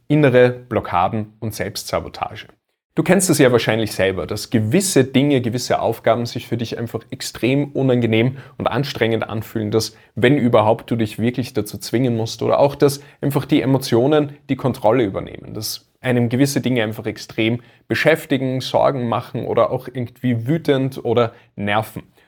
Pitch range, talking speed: 115-135 Hz, 155 wpm